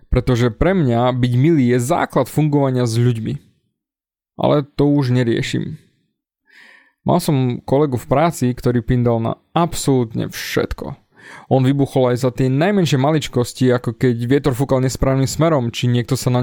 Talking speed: 150 wpm